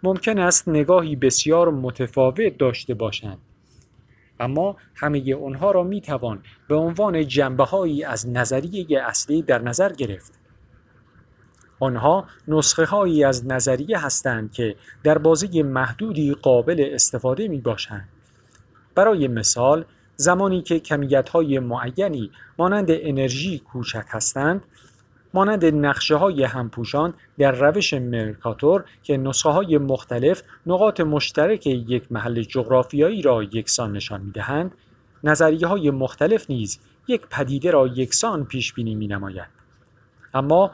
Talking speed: 115 wpm